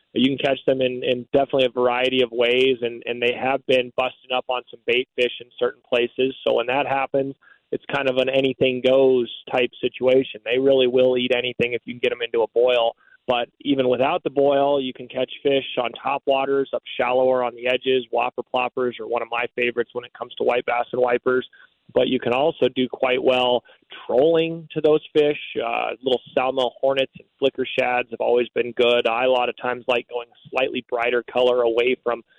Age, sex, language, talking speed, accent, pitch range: 20-39, male, English, 215 wpm, American, 120-135 Hz